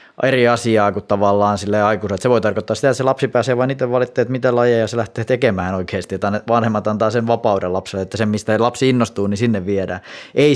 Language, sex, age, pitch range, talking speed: Finnish, male, 20-39, 105-125 Hz, 210 wpm